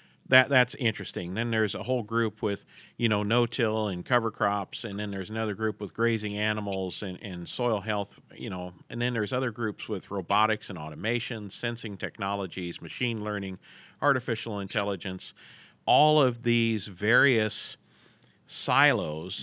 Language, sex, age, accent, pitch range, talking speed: English, male, 40-59, American, 100-120 Hz, 150 wpm